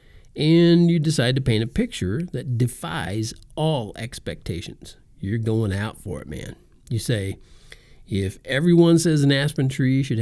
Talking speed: 155 wpm